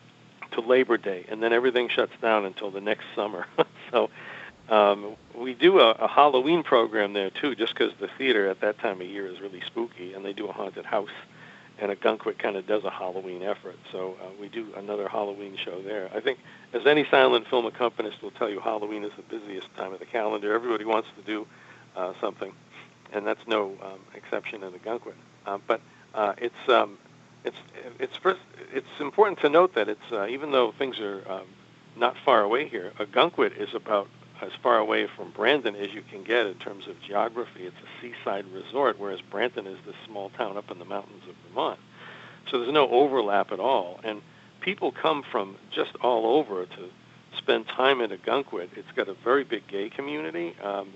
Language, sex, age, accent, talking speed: English, male, 60-79, American, 200 wpm